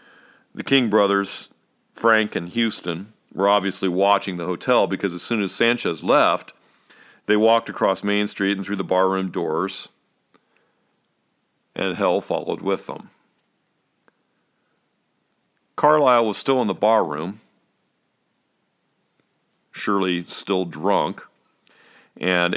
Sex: male